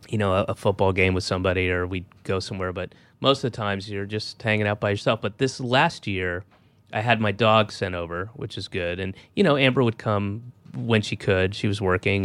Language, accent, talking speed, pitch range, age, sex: English, American, 235 wpm, 95-110 Hz, 30-49, male